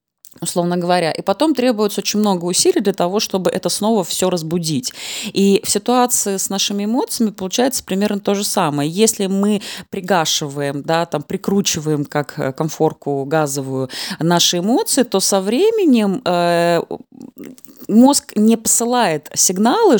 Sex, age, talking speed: female, 20-39, 135 wpm